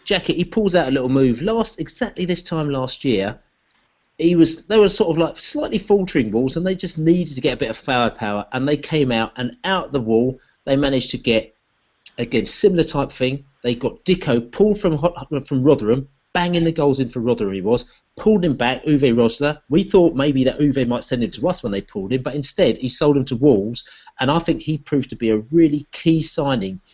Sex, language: male, English